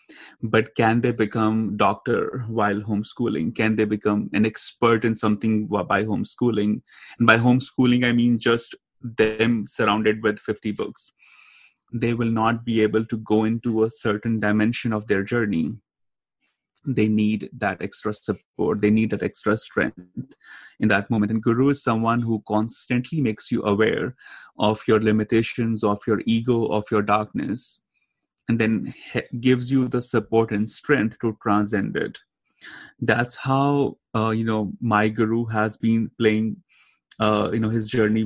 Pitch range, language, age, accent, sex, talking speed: 105-115 Hz, English, 30-49, Indian, male, 155 wpm